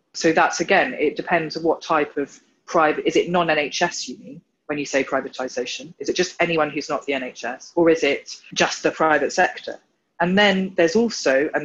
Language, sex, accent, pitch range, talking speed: English, female, British, 140-170 Hz, 200 wpm